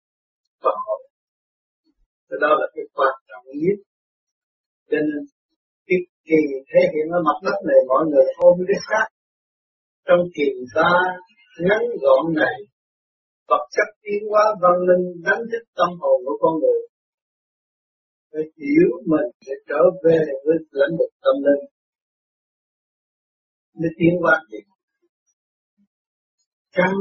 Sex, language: male, Vietnamese